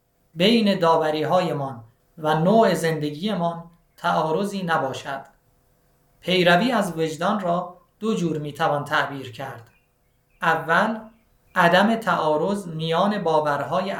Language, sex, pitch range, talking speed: Persian, male, 150-195 Hz, 95 wpm